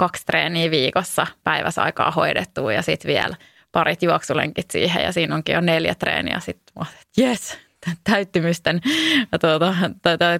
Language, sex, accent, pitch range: English, female, Finnish, 160-180 Hz